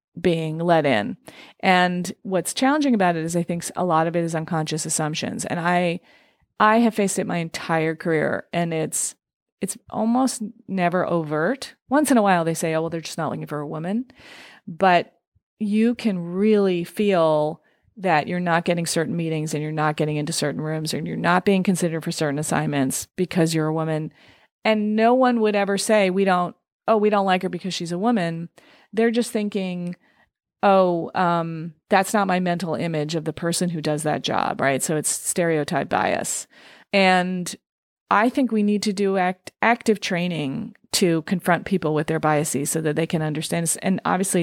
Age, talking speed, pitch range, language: 30-49, 190 wpm, 160-200 Hz, English